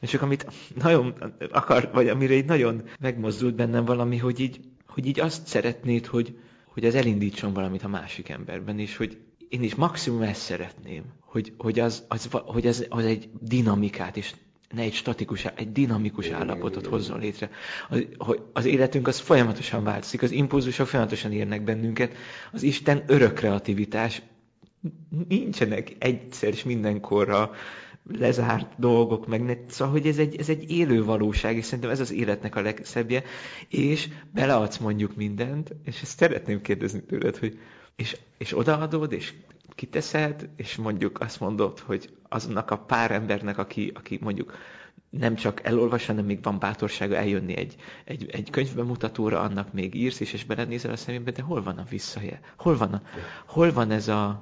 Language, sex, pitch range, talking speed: Hungarian, male, 105-135 Hz, 165 wpm